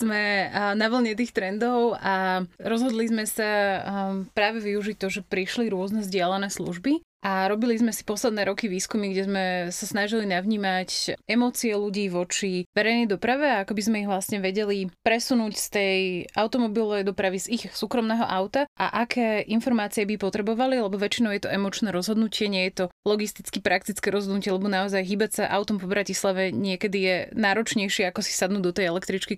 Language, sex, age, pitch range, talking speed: Slovak, female, 20-39, 190-220 Hz, 170 wpm